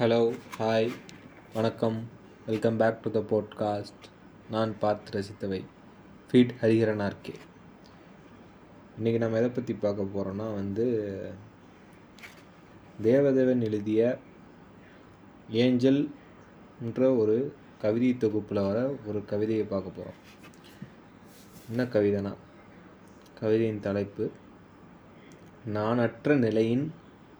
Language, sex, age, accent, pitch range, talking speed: Tamil, male, 20-39, native, 105-120 Hz, 90 wpm